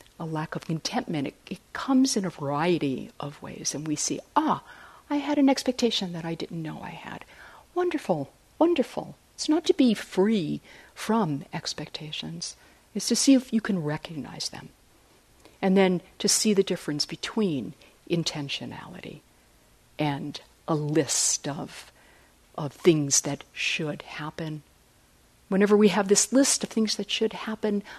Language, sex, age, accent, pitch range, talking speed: English, female, 60-79, American, 150-210 Hz, 150 wpm